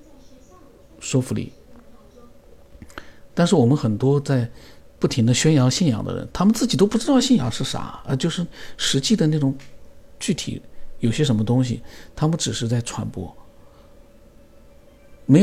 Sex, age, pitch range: male, 50-69, 110-135 Hz